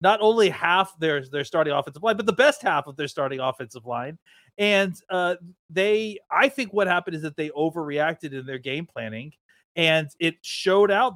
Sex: male